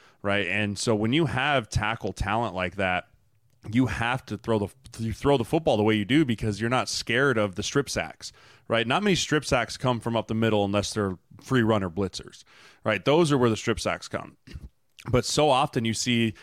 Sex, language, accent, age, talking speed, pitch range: male, English, American, 20-39, 215 wpm, 105-130 Hz